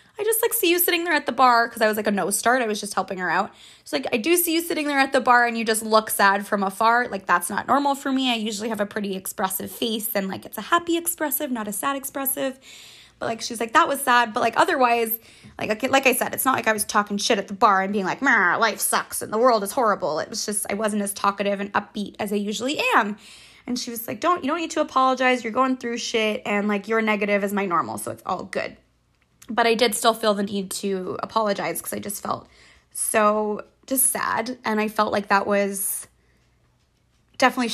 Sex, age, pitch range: female, 20-39, 205-270 Hz